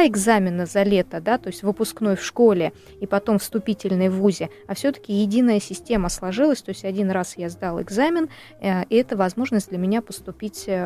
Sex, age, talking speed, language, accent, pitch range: female, 20-39, 190 wpm, Russian, native, 190-230 Hz